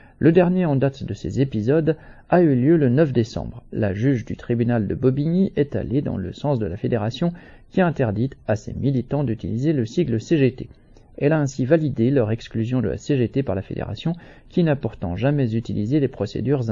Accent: French